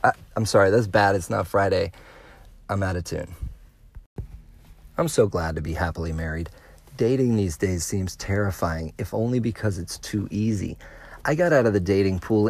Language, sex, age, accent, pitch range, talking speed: English, male, 40-59, American, 100-135 Hz, 175 wpm